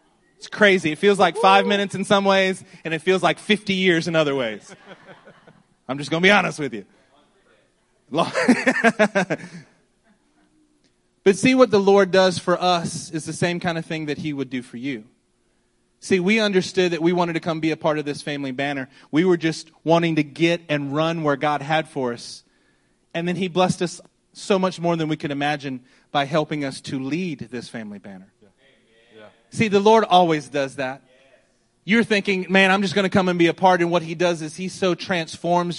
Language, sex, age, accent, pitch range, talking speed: English, male, 30-49, American, 140-190 Hz, 205 wpm